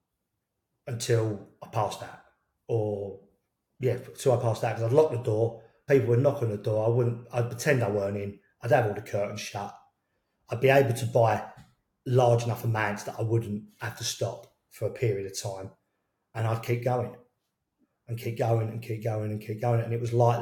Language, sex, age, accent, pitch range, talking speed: English, male, 30-49, British, 105-120 Hz, 205 wpm